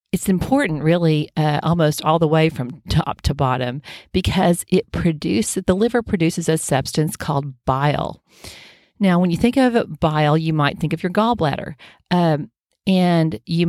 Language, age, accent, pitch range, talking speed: English, 40-59, American, 145-175 Hz, 160 wpm